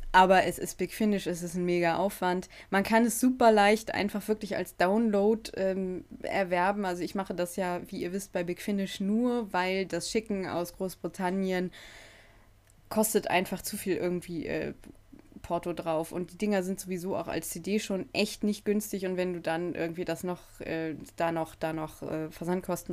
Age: 20-39